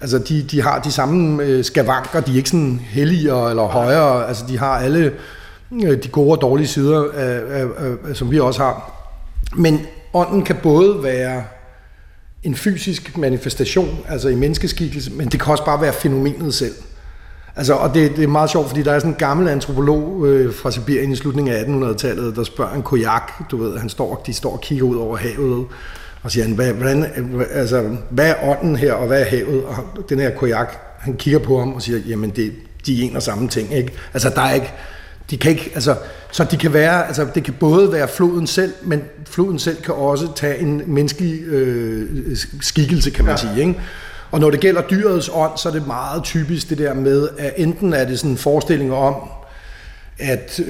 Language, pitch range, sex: Danish, 125-155 Hz, male